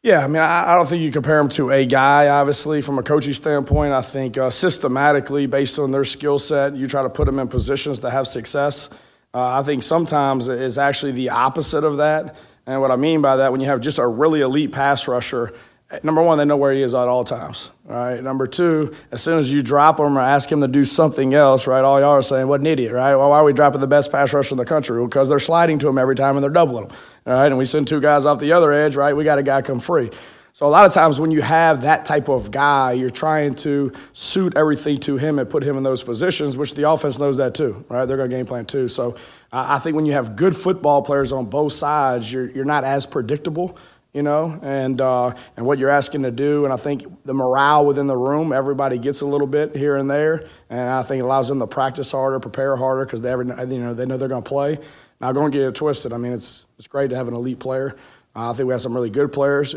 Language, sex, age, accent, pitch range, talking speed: English, male, 30-49, American, 130-145 Hz, 265 wpm